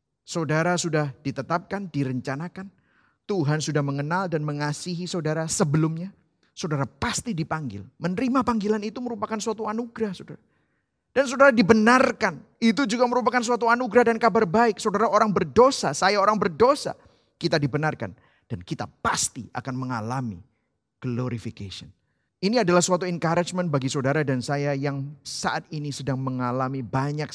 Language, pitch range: Indonesian, 125-200 Hz